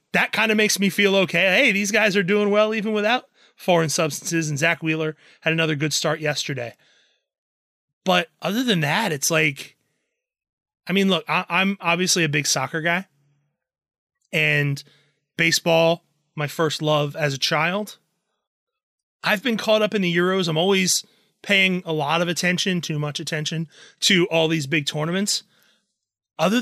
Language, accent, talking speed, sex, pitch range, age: English, American, 160 wpm, male, 160-205 Hz, 30-49